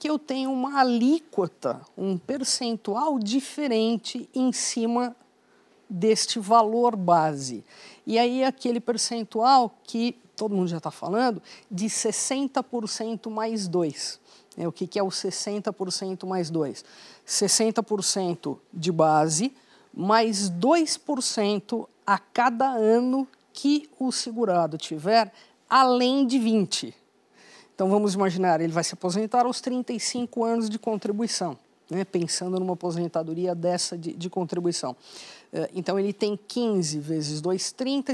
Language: Portuguese